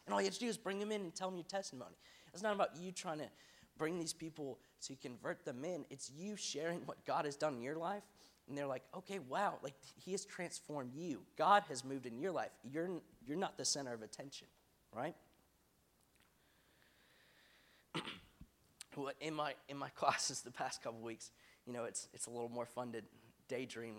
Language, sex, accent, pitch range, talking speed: English, male, American, 125-165 Hz, 205 wpm